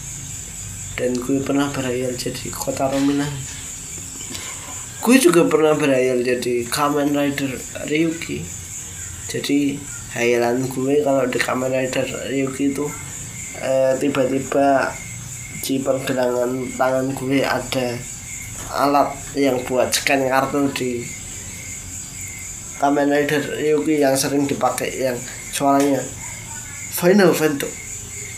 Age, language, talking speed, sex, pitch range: 20-39, Indonesian, 100 wpm, male, 120-145 Hz